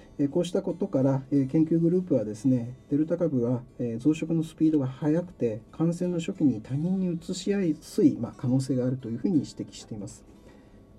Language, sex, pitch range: Japanese, male, 125-170 Hz